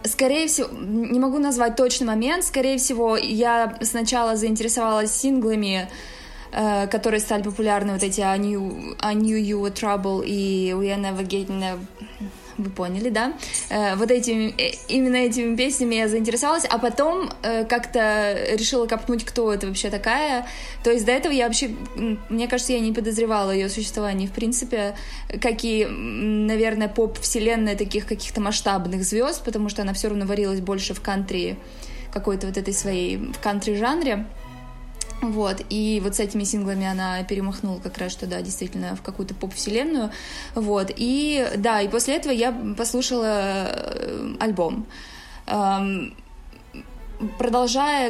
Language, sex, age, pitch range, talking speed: Russian, female, 20-39, 200-240 Hz, 140 wpm